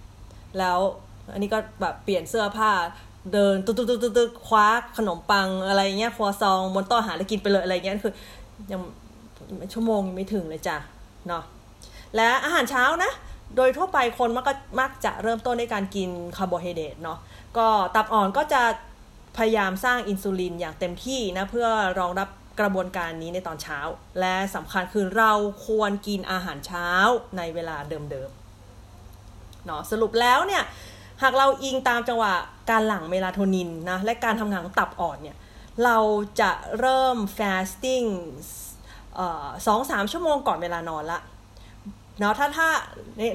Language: Thai